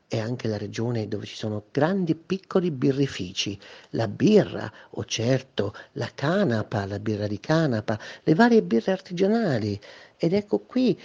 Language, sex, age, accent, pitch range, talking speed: Italian, male, 50-69, native, 115-165 Hz, 150 wpm